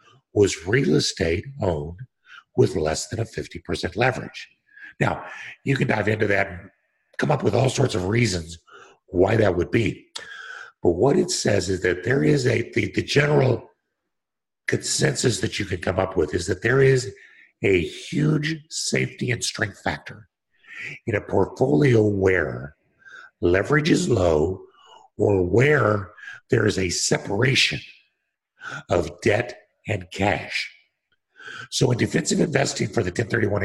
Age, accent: 60-79, American